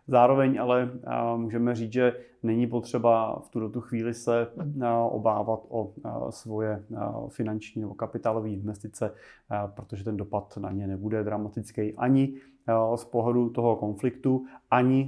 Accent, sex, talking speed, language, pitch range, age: native, male, 125 wpm, Czech, 105-120 Hz, 30-49